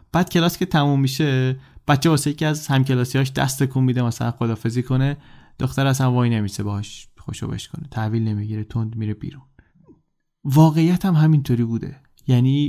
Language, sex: Persian, male